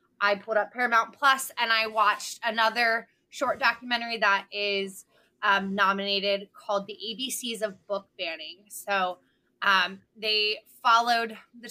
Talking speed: 135 wpm